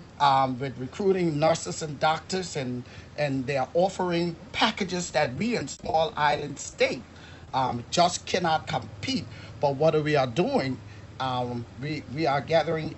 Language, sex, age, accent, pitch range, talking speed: English, male, 40-59, American, 130-170 Hz, 155 wpm